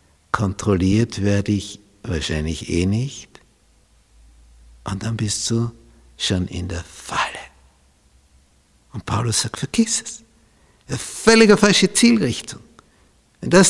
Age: 60-79